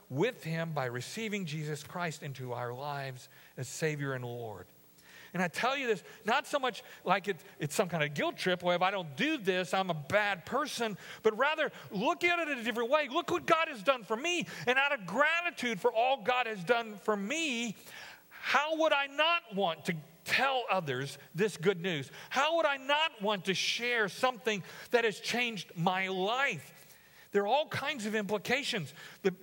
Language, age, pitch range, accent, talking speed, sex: English, 40-59, 150-230 Hz, American, 195 wpm, male